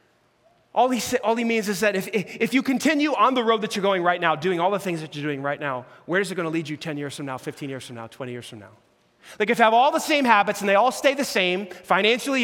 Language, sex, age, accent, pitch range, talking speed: English, male, 30-49, American, 195-280 Hz, 310 wpm